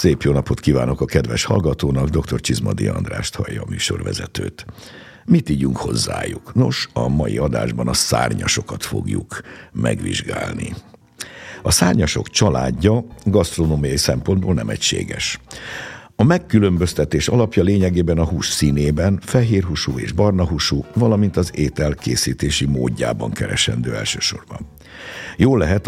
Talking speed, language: 115 wpm, Hungarian